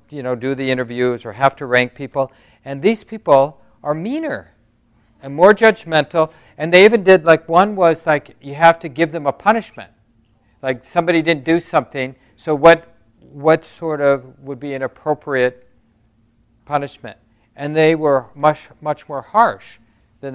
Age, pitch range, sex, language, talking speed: 50-69, 115-150 Hz, male, English, 165 wpm